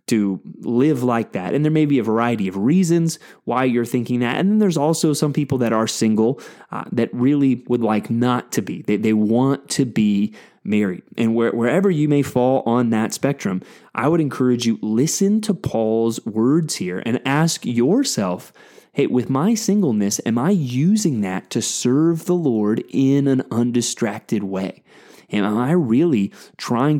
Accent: American